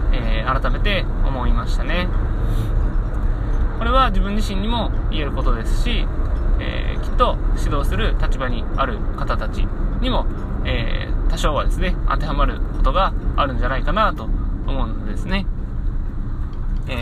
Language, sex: Japanese, male